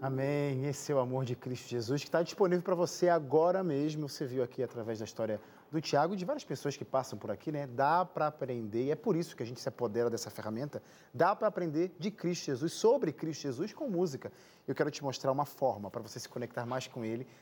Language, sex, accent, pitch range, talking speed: Portuguese, male, Brazilian, 130-175 Hz, 240 wpm